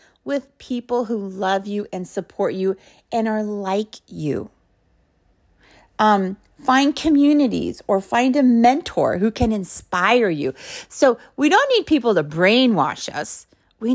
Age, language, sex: 40-59, English, female